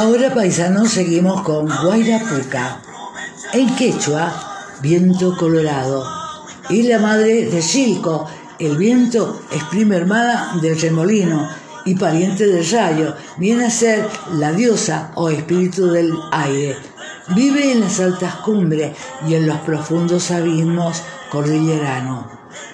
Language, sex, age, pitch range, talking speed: Spanish, female, 50-69, 155-215 Hz, 120 wpm